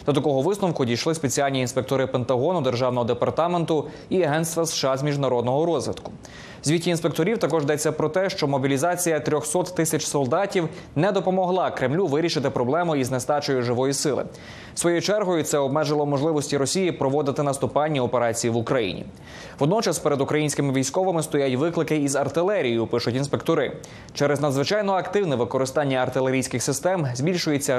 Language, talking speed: Ukrainian, 135 wpm